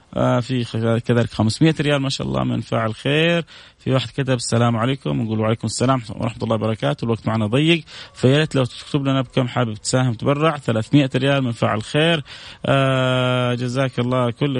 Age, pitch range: 20-39, 115-140 Hz